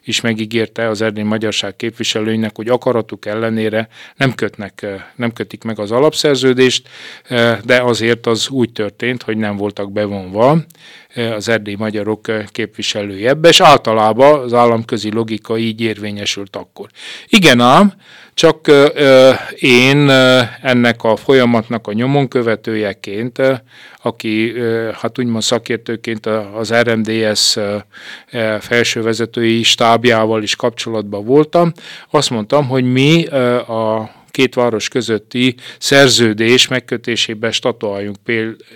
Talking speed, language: 110 wpm, Hungarian